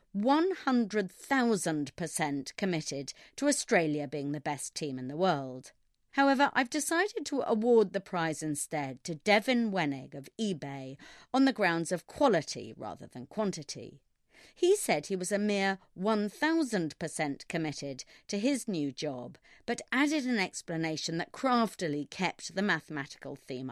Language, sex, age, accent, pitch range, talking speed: English, female, 40-59, British, 150-240 Hz, 135 wpm